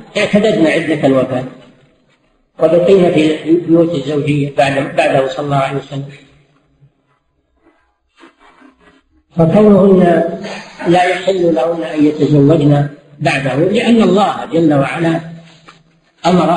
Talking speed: 85 wpm